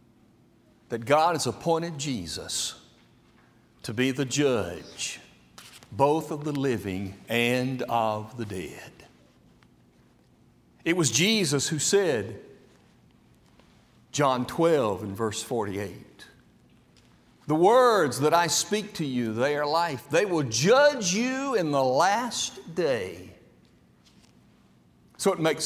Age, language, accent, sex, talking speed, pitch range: 60-79, English, American, male, 110 wpm, 110-150 Hz